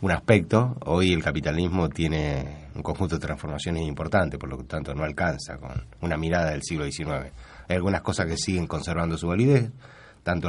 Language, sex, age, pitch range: Spanish, male, 30-49, 80-95 Hz